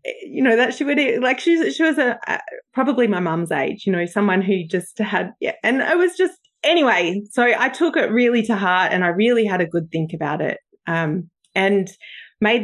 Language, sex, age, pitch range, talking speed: English, female, 20-39, 180-230 Hz, 215 wpm